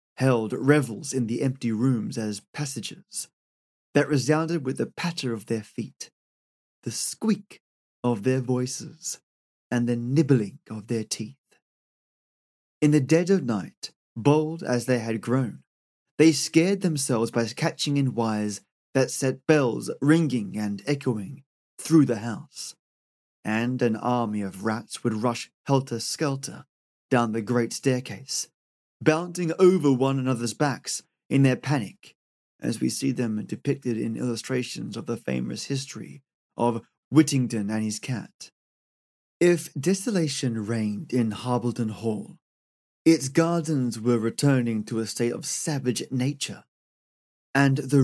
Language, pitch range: English, 110-140 Hz